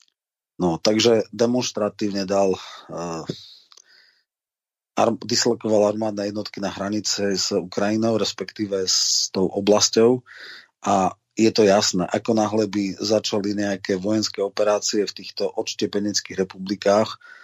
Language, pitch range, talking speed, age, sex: Slovak, 100-110 Hz, 105 wpm, 30-49, male